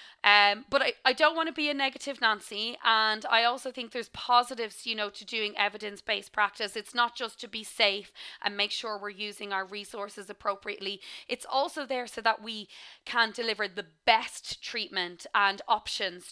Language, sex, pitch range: English, female, 205-235 Hz